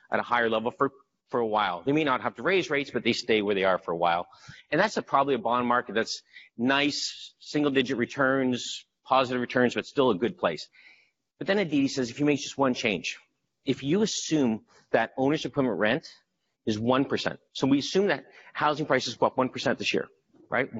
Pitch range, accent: 115-145 Hz, American